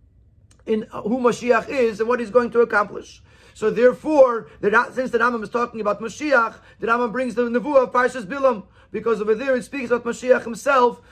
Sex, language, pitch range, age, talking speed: male, English, 165-240 Hz, 30-49, 195 wpm